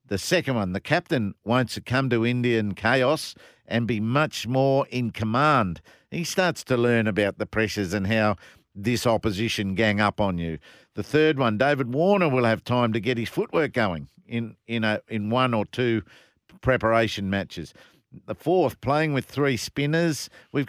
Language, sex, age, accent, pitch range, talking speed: English, male, 50-69, Australian, 110-140 Hz, 175 wpm